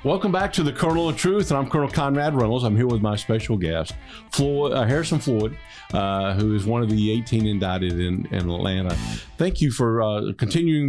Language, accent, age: English, American, 50-69